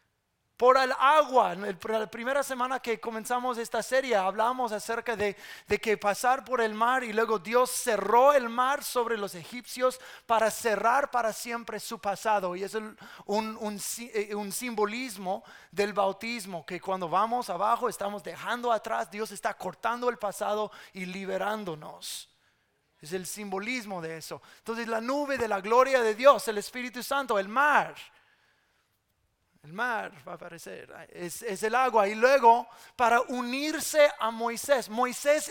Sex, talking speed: male, 155 wpm